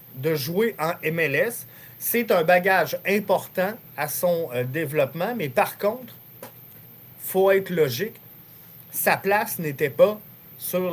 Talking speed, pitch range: 130 wpm, 150-195 Hz